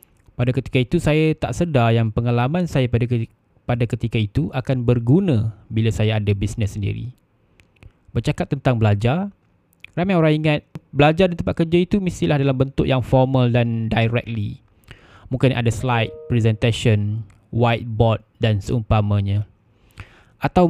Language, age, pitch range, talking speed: Malay, 20-39, 110-130 Hz, 130 wpm